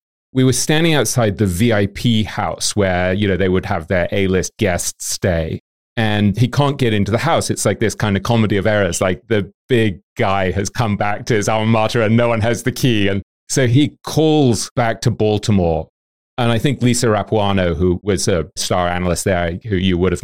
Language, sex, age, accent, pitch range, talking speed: English, male, 30-49, British, 95-120 Hz, 215 wpm